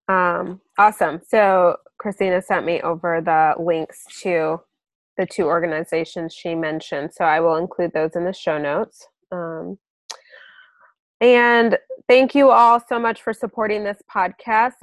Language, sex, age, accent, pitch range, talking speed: English, female, 20-39, American, 165-215 Hz, 140 wpm